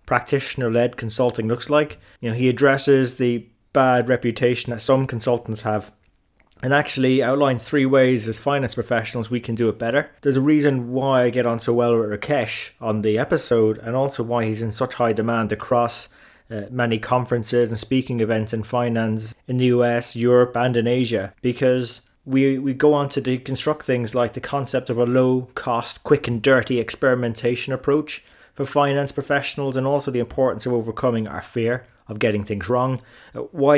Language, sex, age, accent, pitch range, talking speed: English, male, 20-39, British, 115-135 Hz, 180 wpm